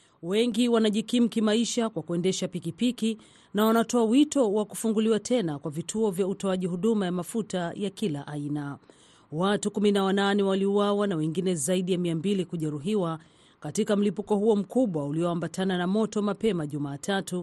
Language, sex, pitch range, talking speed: Swahili, female, 170-220 Hz, 140 wpm